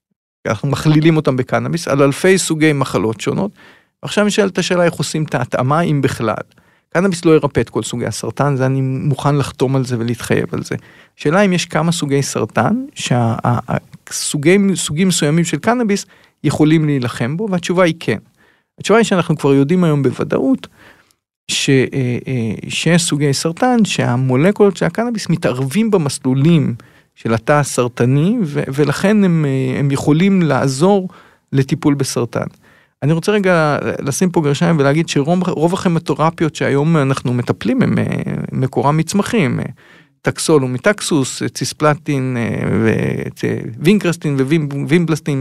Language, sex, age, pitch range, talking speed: Hebrew, male, 40-59, 130-175 Hz, 135 wpm